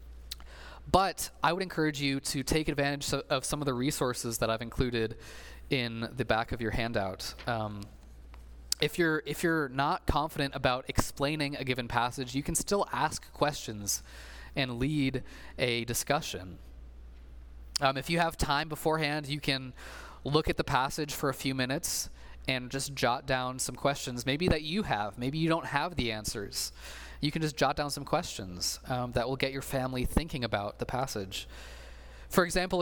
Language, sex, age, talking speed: English, male, 20-39, 170 wpm